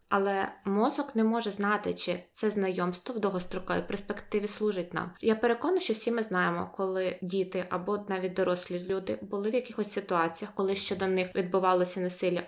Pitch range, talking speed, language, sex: 185-220 Hz, 170 wpm, Ukrainian, female